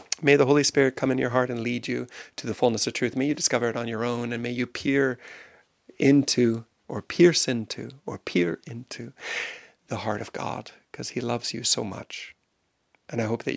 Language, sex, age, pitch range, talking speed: English, male, 40-59, 105-130 Hz, 210 wpm